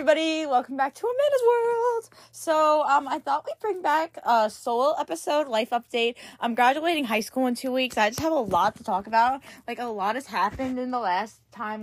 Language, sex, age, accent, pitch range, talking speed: English, female, 10-29, American, 205-265 Hz, 215 wpm